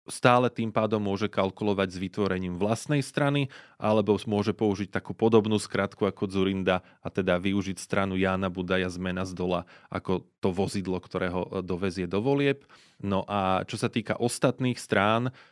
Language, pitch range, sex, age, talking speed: Slovak, 95-110 Hz, male, 20-39, 155 wpm